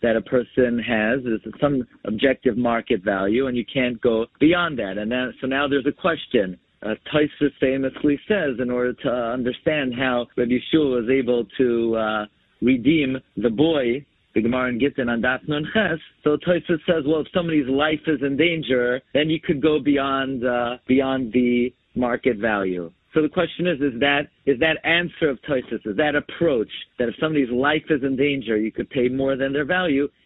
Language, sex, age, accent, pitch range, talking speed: English, male, 50-69, American, 120-145 Hz, 190 wpm